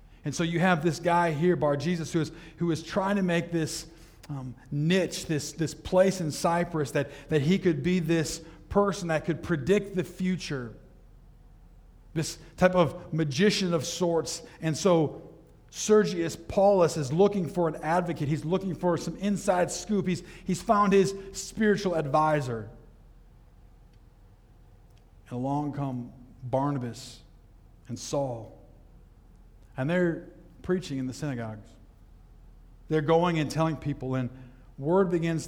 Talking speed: 140 wpm